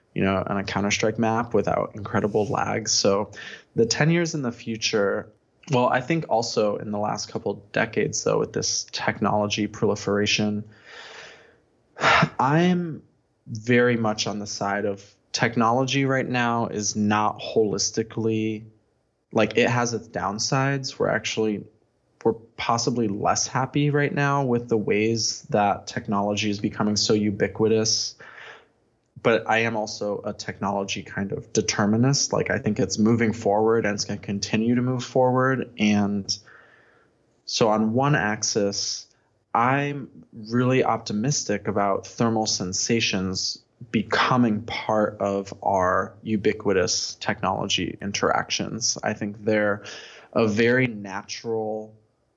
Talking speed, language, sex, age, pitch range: 130 wpm, English, male, 20-39, 105-120 Hz